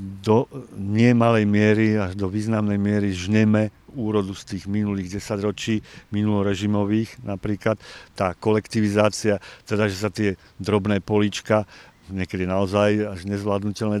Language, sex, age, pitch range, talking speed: Slovak, male, 50-69, 105-115 Hz, 115 wpm